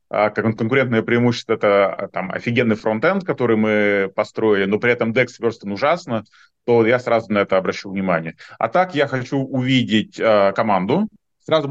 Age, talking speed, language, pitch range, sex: 30-49, 160 wpm, Russian, 105-130 Hz, male